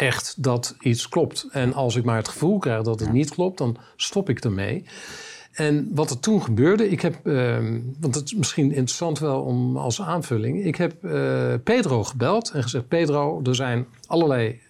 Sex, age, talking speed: male, 50-69, 190 wpm